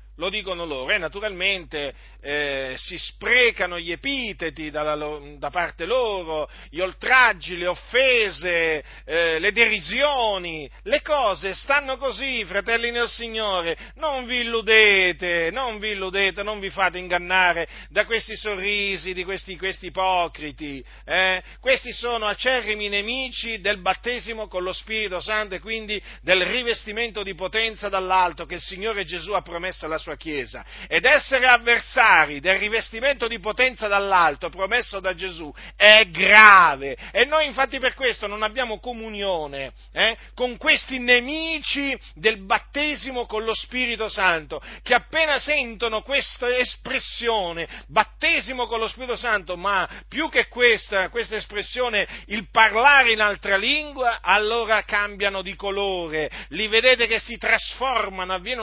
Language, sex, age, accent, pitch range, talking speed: Italian, male, 40-59, native, 185-240 Hz, 135 wpm